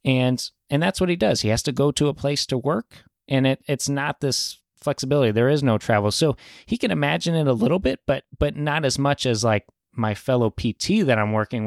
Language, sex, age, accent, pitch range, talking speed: English, male, 30-49, American, 115-140 Hz, 230 wpm